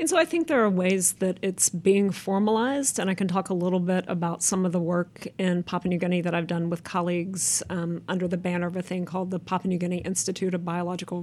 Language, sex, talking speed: English, female, 250 wpm